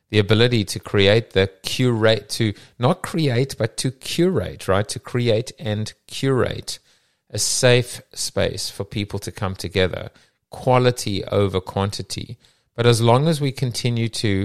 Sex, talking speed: male, 145 wpm